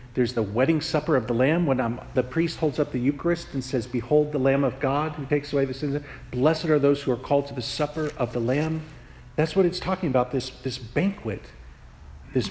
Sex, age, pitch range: male, 50-69, 120-155 Hz